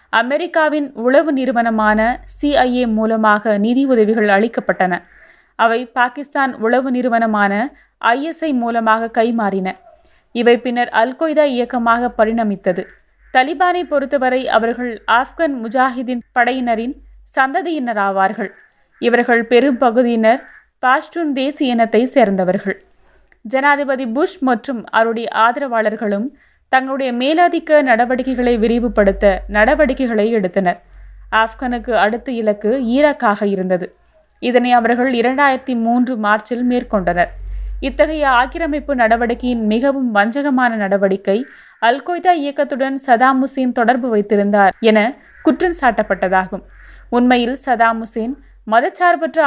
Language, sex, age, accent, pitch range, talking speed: Tamil, female, 20-39, native, 220-270 Hz, 90 wpm